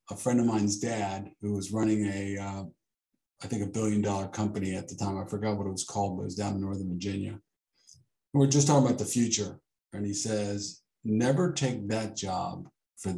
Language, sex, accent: English, male, American